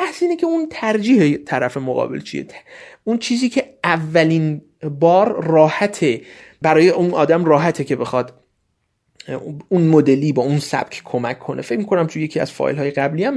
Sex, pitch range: male, 145-210 Hz